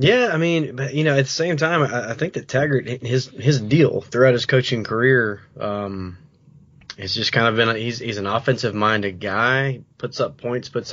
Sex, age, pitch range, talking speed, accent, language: male, 20-39, 110-140 Hz, 215 wpm, American, English